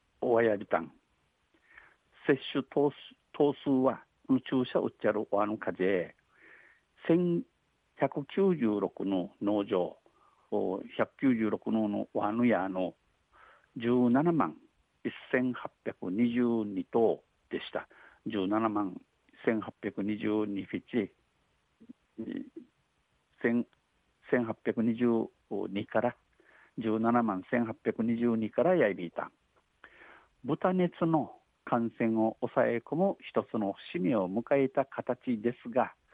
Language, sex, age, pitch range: Japanese, male, 60-79, 105-135 Hz